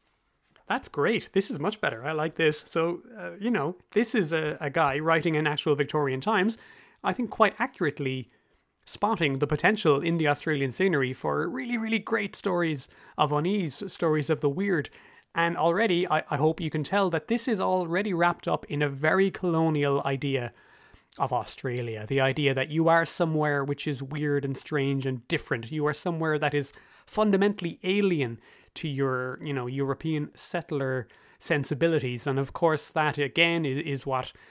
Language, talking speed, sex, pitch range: English, 175 wpm, male, 140-175 Hz